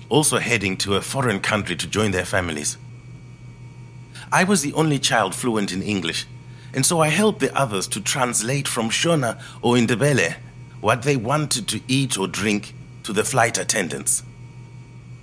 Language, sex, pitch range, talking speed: English, male, 120-150 Hz, 160 wpm